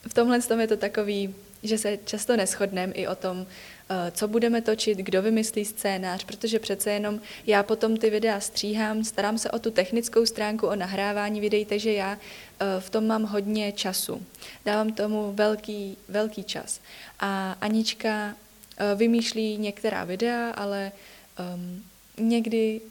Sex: female